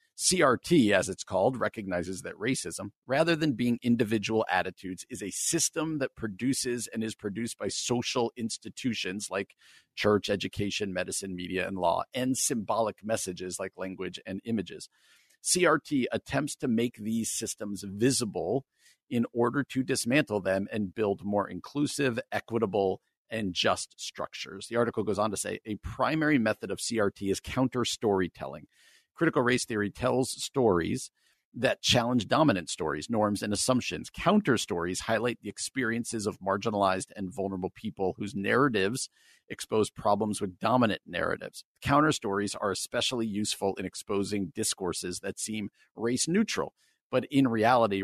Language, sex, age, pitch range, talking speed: English, male, 50-69, 95-120 Hz, 140 wpm